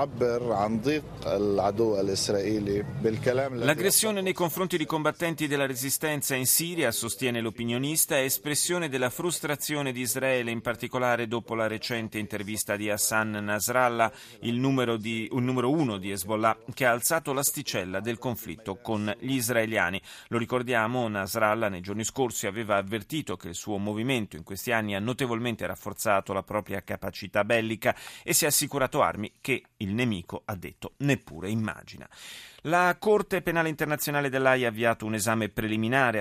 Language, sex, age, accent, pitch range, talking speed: Italian, male, 30-49, native, 105-130 Hz, 140 wpm